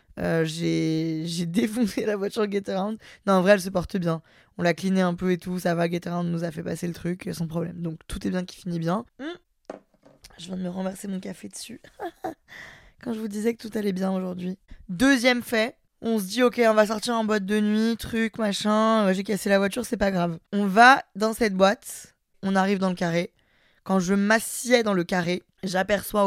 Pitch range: 180-215 Hz